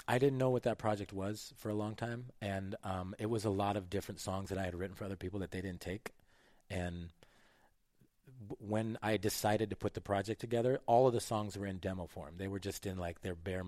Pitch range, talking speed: 90-105 Hz, 240 wpm